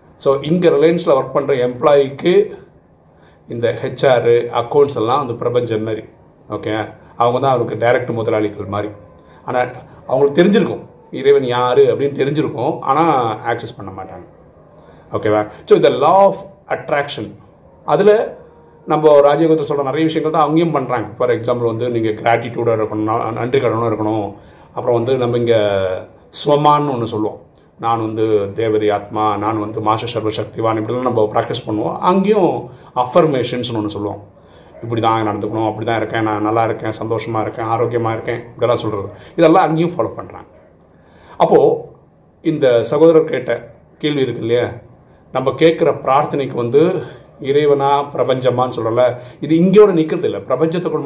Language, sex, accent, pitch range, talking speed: Tamil, male, native, 110-150 Hz, 135 wpm